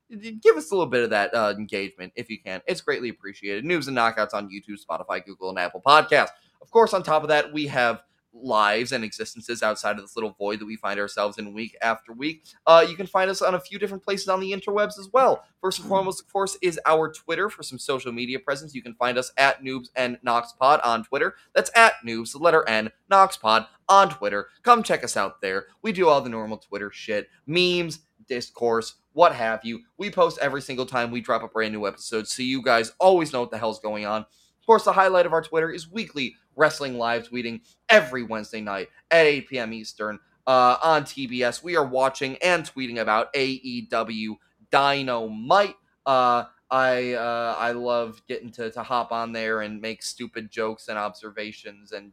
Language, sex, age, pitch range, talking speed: English, male, 20-39, 110-165 Hz, 210 wpm